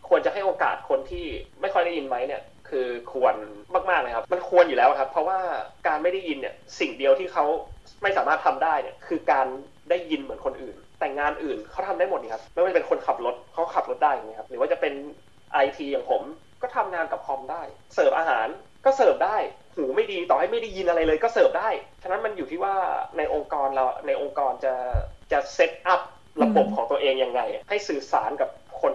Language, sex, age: Thai, male, 20-39